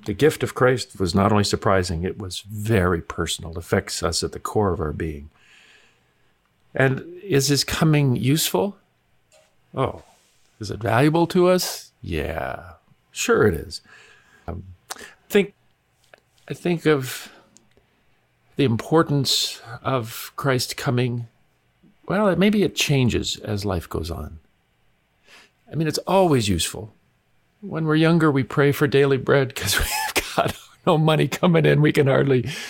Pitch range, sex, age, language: 105-145 Hz, male, 50-69, English